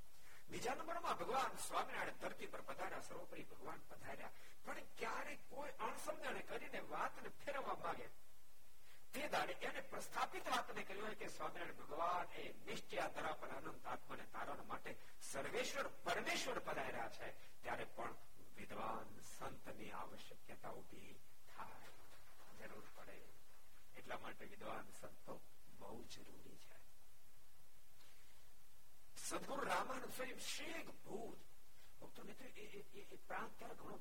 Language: Gujarati